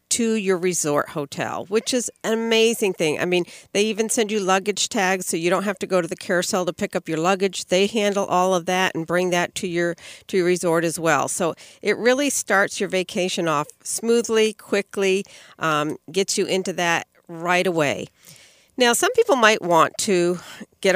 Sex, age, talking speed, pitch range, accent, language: female, 50-69, 200 wpm, 160-200 Hz, American, English